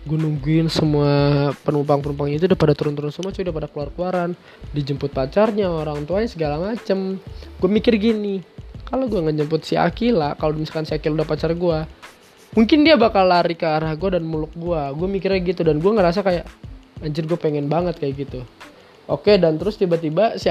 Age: 20-39